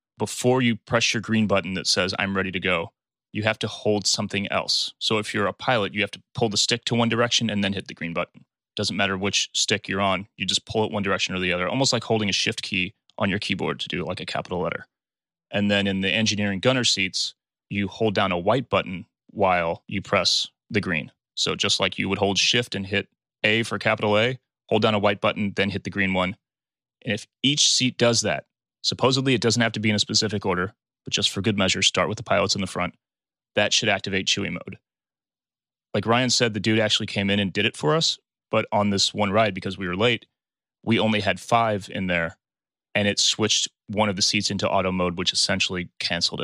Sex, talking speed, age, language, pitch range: male, 235 wpm, 30-49, English, 95-115 Hz